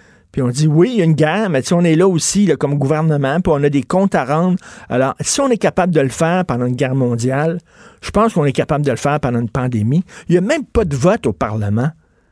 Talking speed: 280 wpm